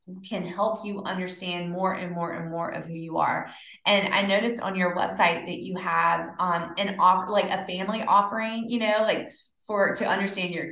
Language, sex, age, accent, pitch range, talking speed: English, female, 20-39, American, 180-230 Hz, 200 wpm